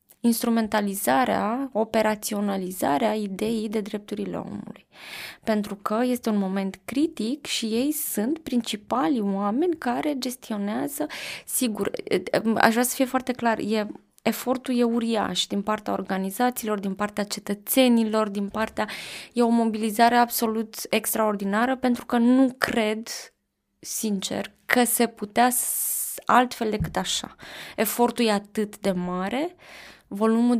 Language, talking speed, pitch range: Romanian, 120 wpm, 200-235 Hz